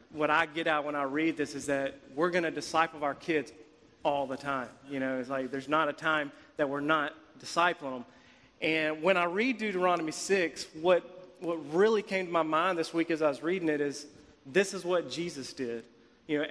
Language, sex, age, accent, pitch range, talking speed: English, male, 40-59, American, 145-170 Hz, 220 wpm